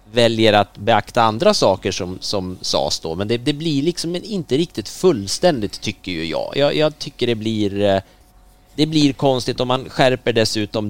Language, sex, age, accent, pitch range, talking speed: Swedish, male, 30-49, Norwegian, 95-125 Hz, 180 wpm